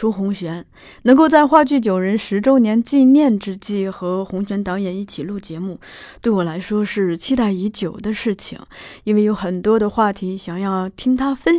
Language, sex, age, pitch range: Chinese, female, 20-39, 190-245 Hz